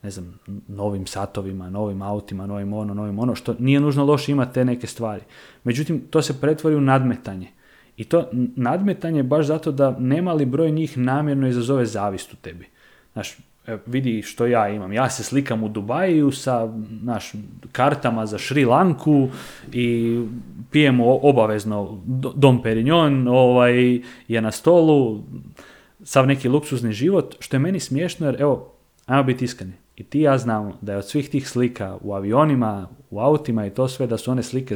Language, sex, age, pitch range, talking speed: Croatian, male, 30-49, 110-140 Hz, 170 wpm